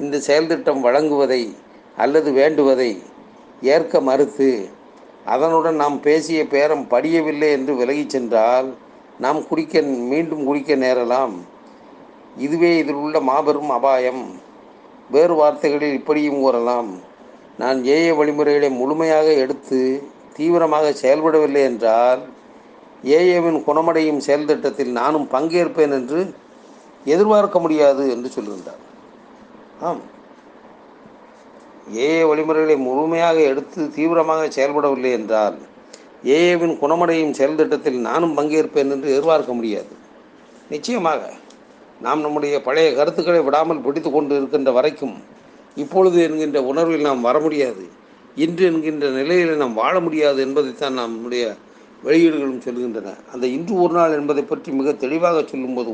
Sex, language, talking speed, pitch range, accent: male, Tamil, 105 wpm, 135-160 Hz, native